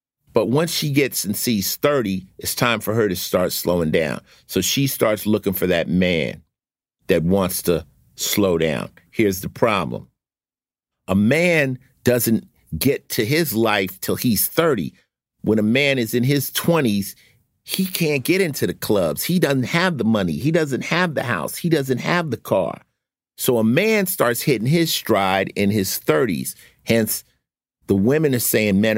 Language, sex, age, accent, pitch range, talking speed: English, male, 50-69, American, 100-145 Hz, 175 wpm